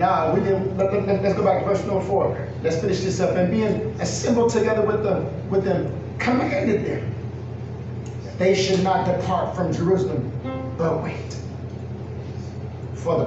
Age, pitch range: 40-59, 120-190 Hz